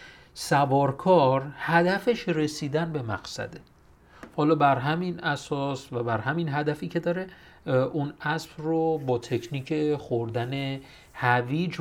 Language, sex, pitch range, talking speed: Persian, male, 125-160 Hz, 110 wpm